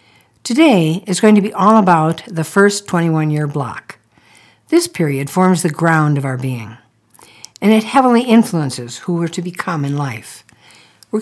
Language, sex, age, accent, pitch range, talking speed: English, female, 60-79, American, 130-210 Hz, 160 wpm